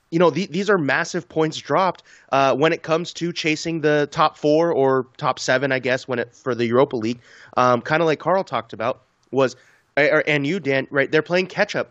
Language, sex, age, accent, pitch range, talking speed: English, male, 20-39, American, 130-170 Hz, 205 wpm